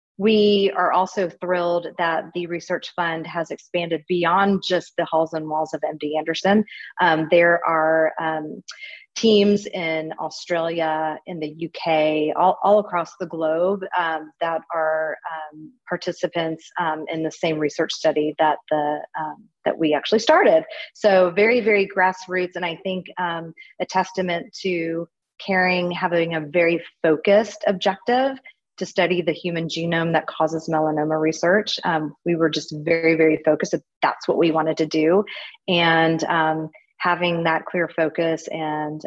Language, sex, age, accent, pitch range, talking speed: English, female, 30-49, American, 160-195 Hz, 150 wpm